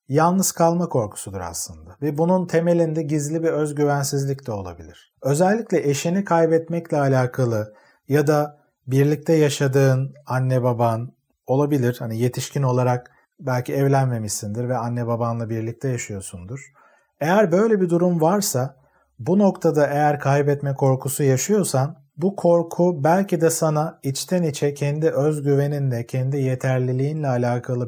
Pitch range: 120-150 Hz